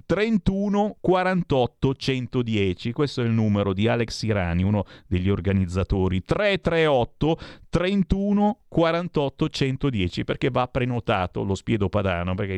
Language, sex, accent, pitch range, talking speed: Italian, male, native, 100-145 Hz, 115 wpm